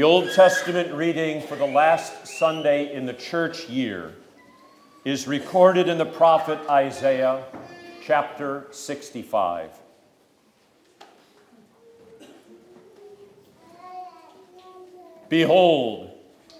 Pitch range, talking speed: 140-185 Hz, 75 wpm